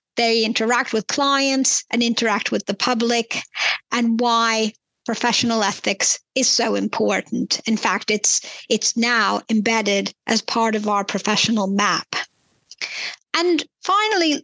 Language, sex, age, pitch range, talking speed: English, female, 50-69, 220-255 Hz, 125 wpm